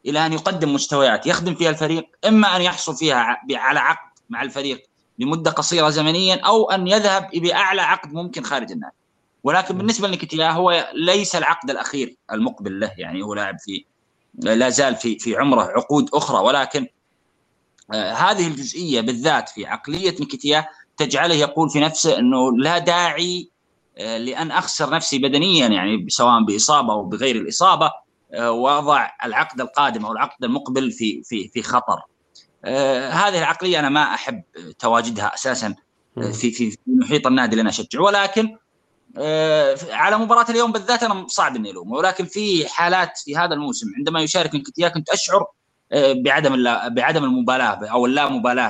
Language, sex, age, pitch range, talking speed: Arabic, male, 20-39, 135-185 Hz, 145 wpm